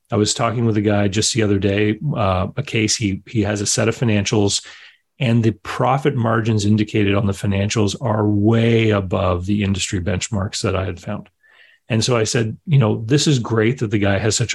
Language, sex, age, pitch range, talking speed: English, male, 30-49, 100-120 Hz, 215 wpm